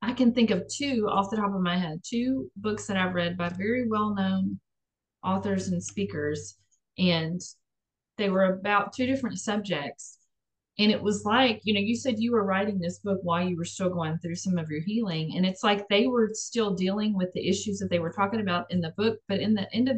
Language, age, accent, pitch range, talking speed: English, 30-49, American, 175-215 Hz, 225 wpm